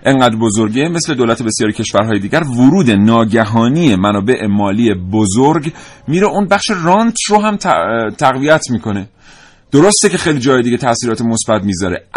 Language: Persian